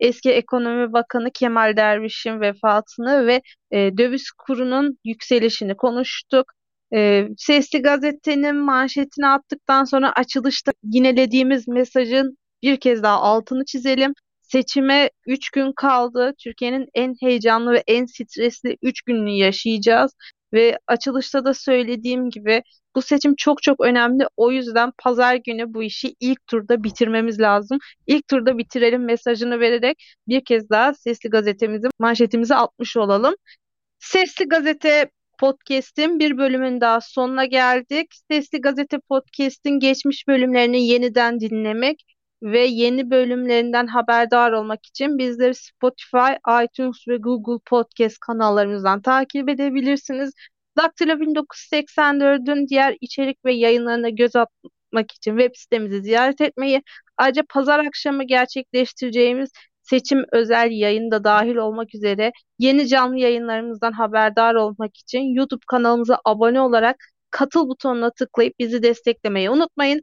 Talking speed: 120 wpm